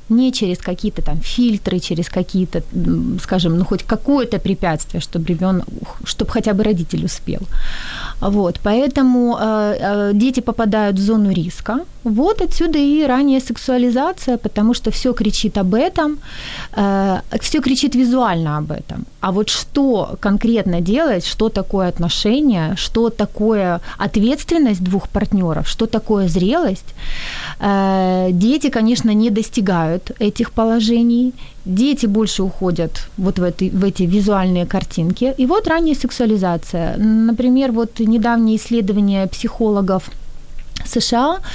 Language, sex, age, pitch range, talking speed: Ukrainian, female, 30-49, 190-245 Hz, 130 wpm